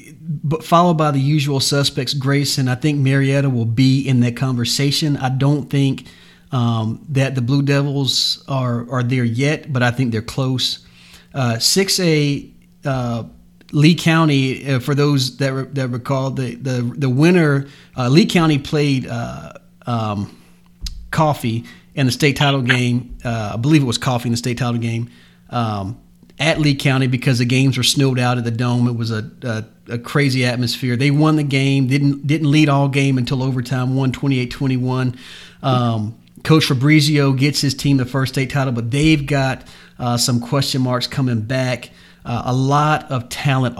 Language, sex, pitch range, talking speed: English, male, 120-140 Hz, 175 wpm